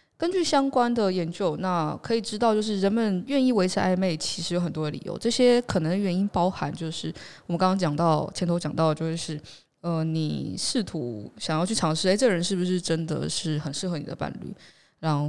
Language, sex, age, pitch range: Chinese, female, 10-29, 160-200 Hz